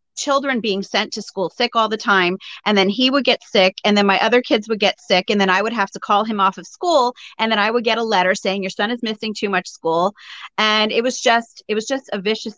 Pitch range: 185-225 Hz